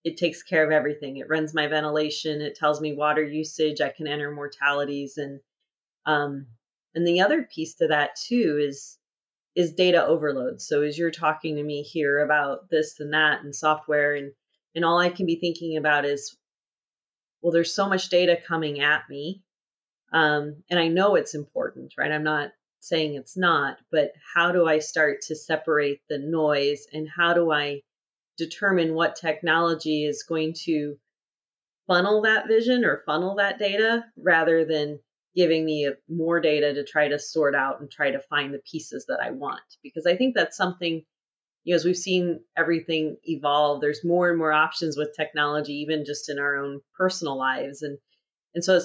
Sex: female